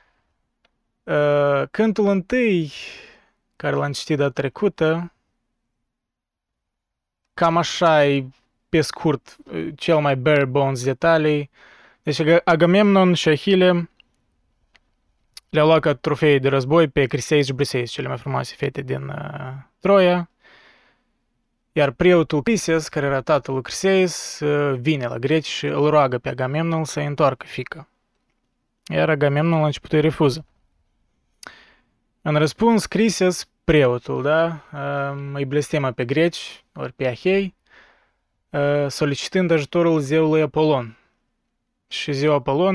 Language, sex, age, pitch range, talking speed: Romanian, male, 20-39, 135-165 Hz, 110 wpm